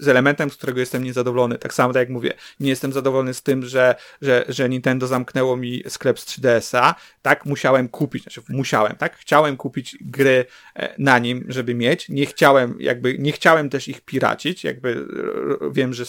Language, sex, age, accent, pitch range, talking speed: Polish, male, 30-49, native, 125-160 Hz, 180 wpm